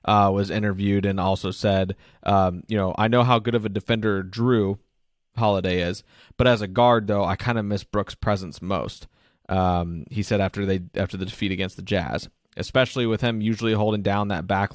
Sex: male